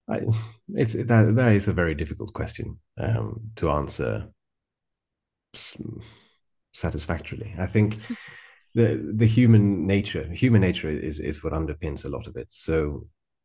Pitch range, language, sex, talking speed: 85-100 Hz, English, male, 135 wpm